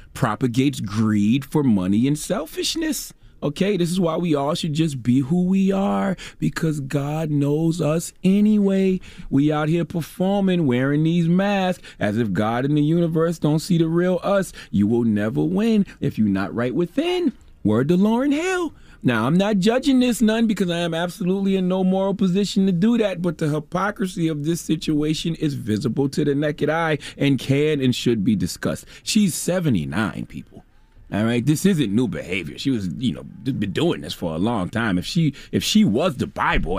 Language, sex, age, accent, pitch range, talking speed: English, male, 30-49, American, 125-190 Hz, 190 wpm